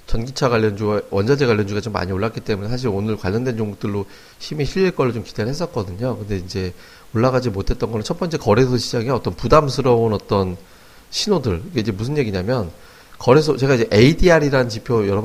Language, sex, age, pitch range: Korean, male, 30-49, 100-130 Hz